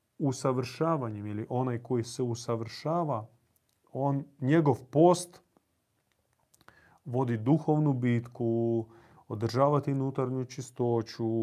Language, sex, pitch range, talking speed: Croatian, male, 115-140 Hz, 80 wpm